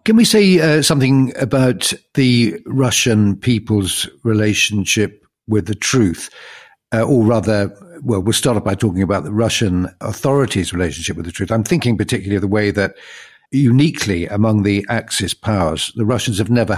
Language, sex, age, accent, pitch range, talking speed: English, male, 50-69, British, 95-115 Hz, 160 wpm